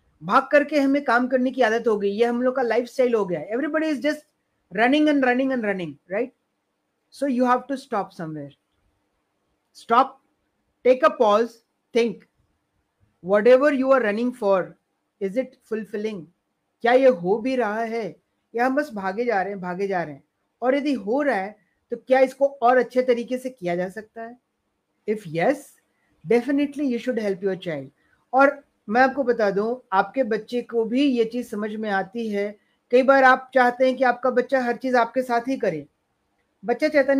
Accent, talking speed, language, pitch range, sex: native, 160 wpm, Hindi, 200-260 Hz, female